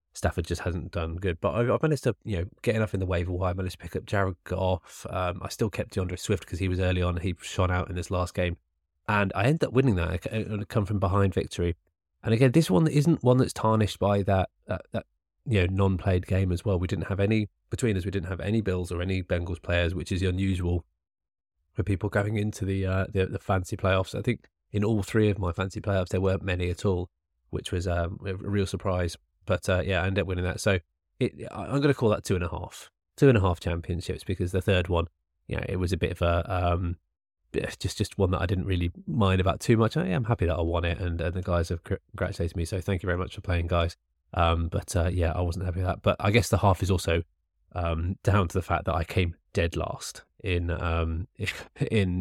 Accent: British